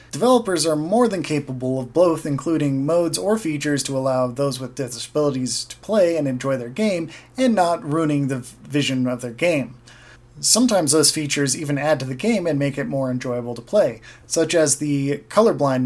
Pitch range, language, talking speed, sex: 130-160 Hz, English, 185 wpm, male